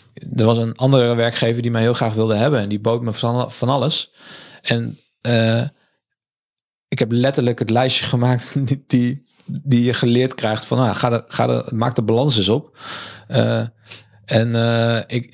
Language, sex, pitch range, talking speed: Dutch, male, 110-130 Hz, 175 wpm